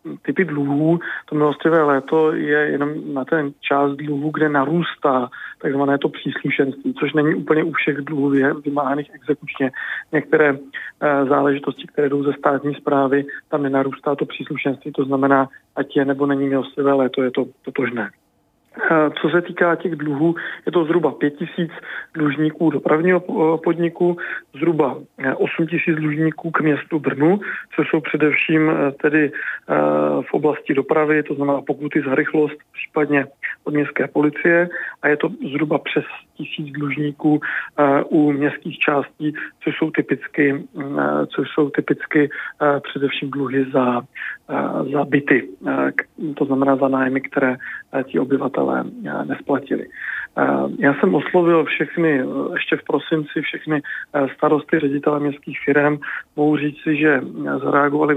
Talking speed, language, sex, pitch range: 130 wpm, Czech, male, 140-155 Hz